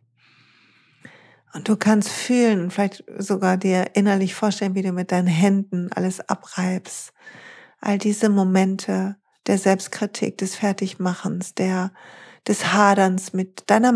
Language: German